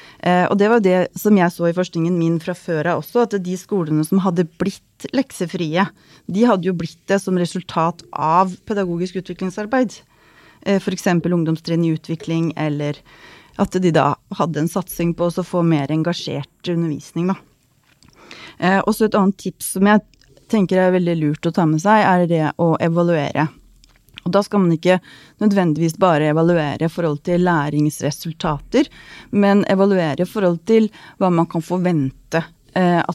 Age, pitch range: 30-49, 165-195 Hz